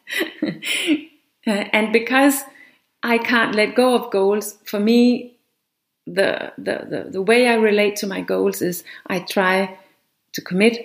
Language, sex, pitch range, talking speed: English, female, 190-245 Hz, 140 wpm